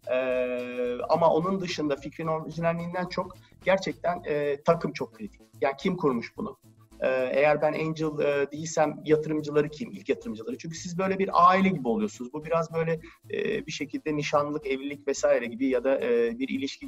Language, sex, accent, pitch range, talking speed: Turkish, male, native, 145-190 Hz, 170 wpm